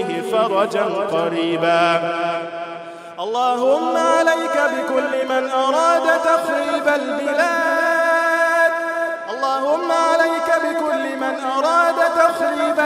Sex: male